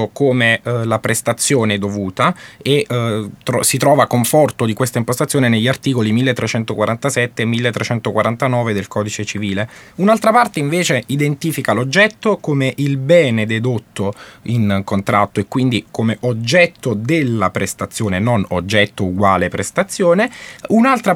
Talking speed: 120 wpm